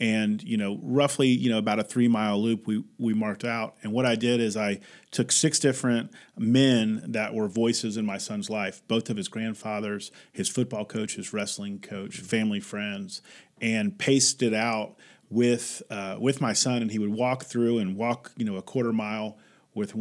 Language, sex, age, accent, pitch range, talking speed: English, male, 40-59, American, 110-125 Hz, 200 wpm